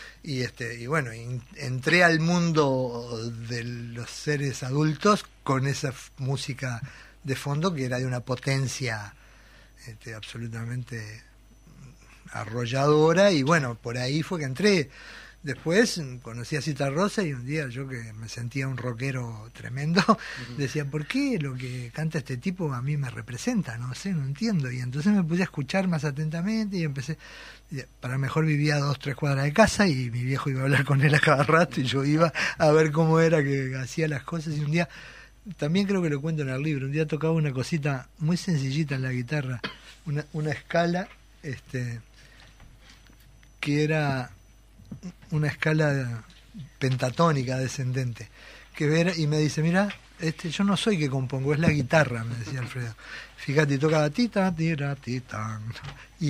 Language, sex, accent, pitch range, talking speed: Spanish, male, Argentinian, 125-160 Hz, 170 wpm